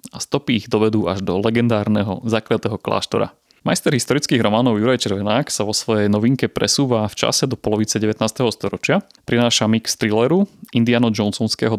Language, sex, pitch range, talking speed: Slovak, male, 105-125 Hz, 150 wpm